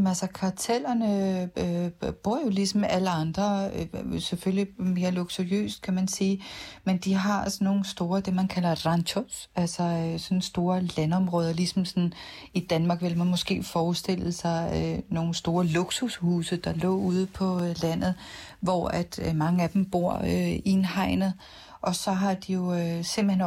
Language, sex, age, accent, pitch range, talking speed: Danish, female, 40-59, native, 170-195 Hz, 165 wpm